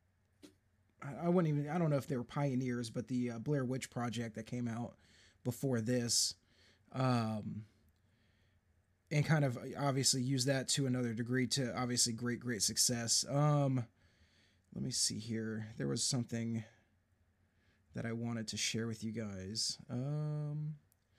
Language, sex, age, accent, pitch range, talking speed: English, male, 20-39, American, 110-140 Hz, 150 wpm